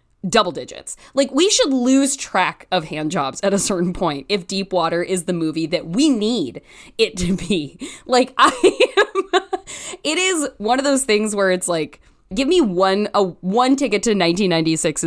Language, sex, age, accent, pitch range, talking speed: English, female, 20-39, American, 175-270 Hz, 180 wpm